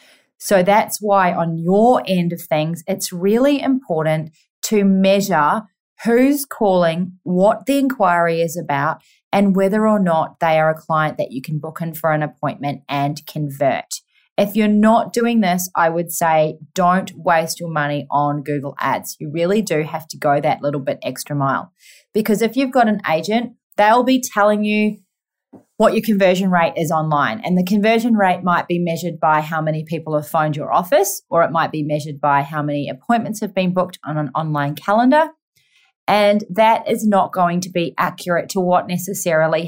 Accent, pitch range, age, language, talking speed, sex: Australian, 160-215 Hz, 30-49, English, 185 wpm, female